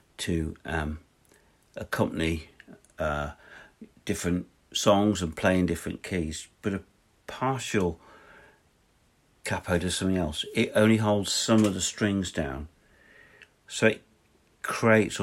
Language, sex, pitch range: English, male, 85-120 Hz